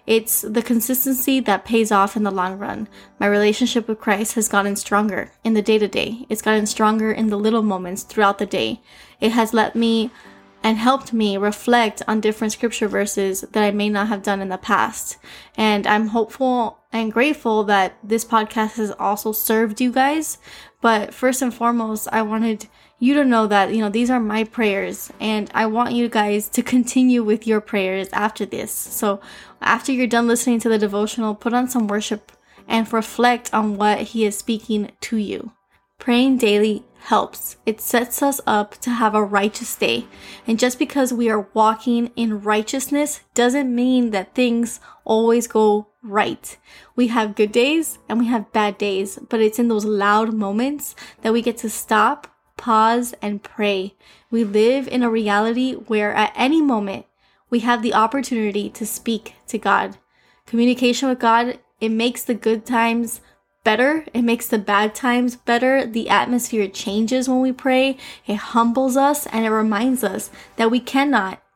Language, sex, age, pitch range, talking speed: English, female, 10-29, 210-240 Hz, 175 wpm